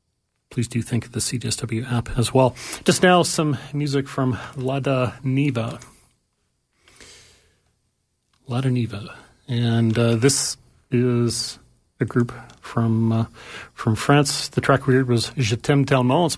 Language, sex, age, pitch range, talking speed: English, male, 40-59, 120-140 Hz, 135 wpm